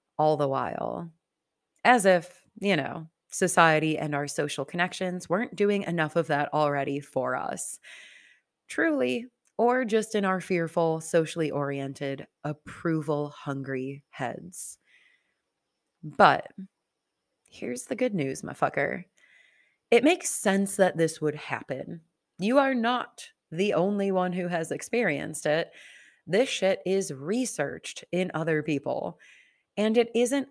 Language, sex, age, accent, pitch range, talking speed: English, female, 30-49, American, 155-195 Hz, 120 wpm